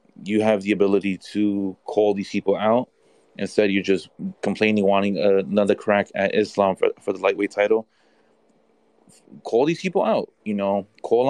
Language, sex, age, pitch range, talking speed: English, male, 20-39, 100-145 Hz, 160 wpm